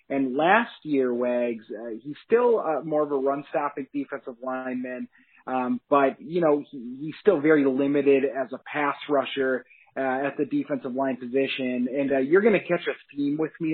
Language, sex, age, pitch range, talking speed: English, male, 30-49, 135-150 Hz, 190 wpm